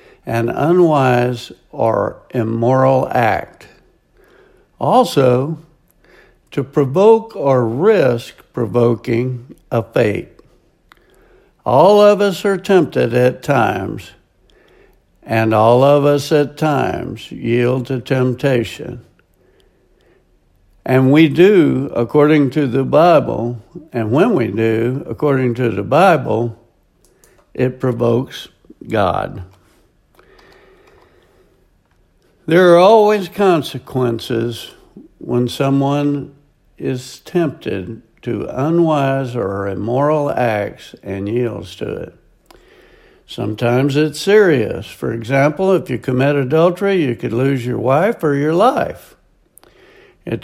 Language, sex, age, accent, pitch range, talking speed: English, male, 60-79, American, 120-160 Hz, 100 wpm